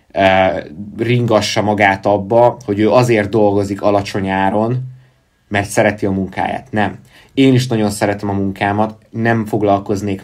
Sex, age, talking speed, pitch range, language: male, 20-39, 125 wpm, 100-120 Hz, Hungarian